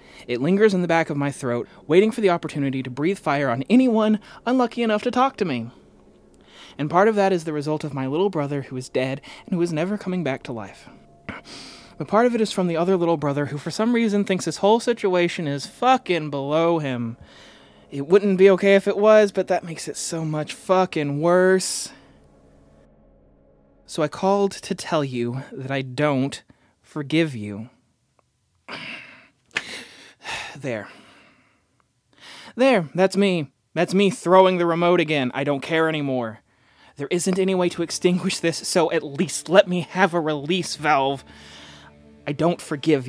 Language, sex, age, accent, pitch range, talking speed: English, male, 20-39, American, 135-185 Hz, 175 wpm